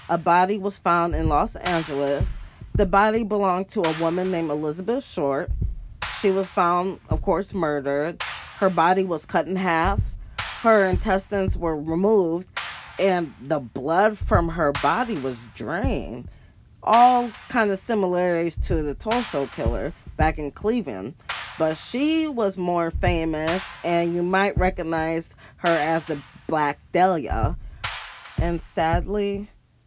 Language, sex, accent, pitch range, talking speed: English, female, American, 150-195 Hz, 135 wpm